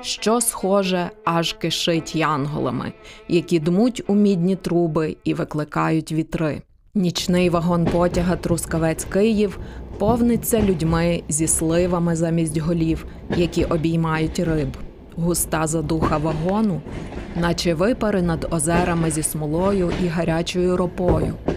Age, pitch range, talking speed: 20-39, 165-195 Hz, 110 wpm